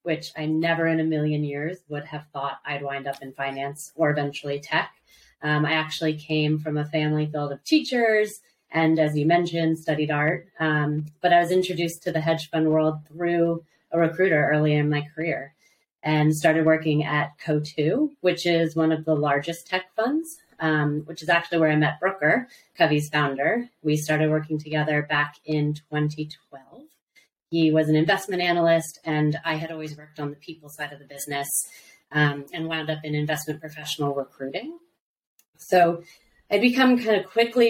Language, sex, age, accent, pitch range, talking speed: English, female, 30-49, American, 150-170 Hz, 180 wpm